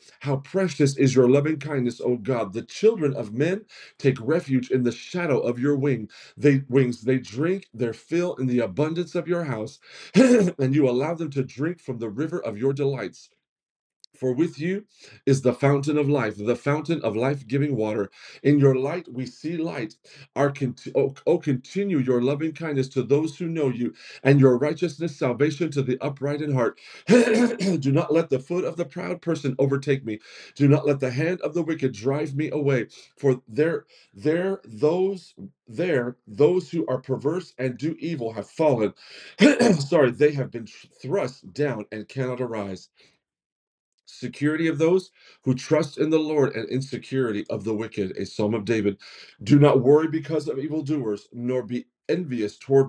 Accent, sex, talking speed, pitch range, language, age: American, male, 180 wpm, 125-160 Hz, English, 40-59